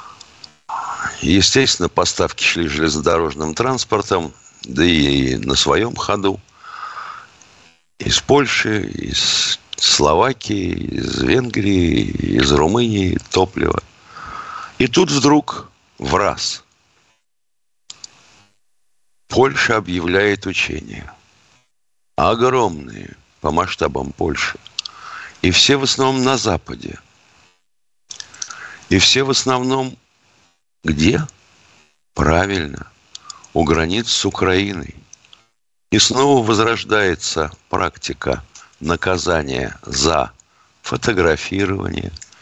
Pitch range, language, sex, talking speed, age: 85-115 Hz, Russian, male, 75 wpm, 60-79